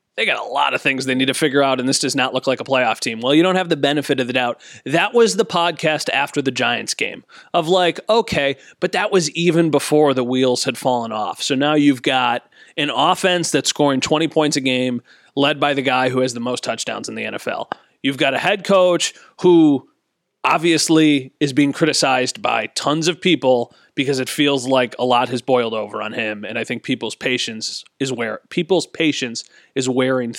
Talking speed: 215 wpm